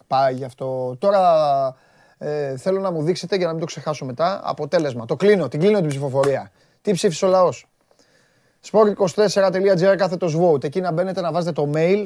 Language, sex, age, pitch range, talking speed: Greek, male, 30-49, 145-205 Hz, 170 wpm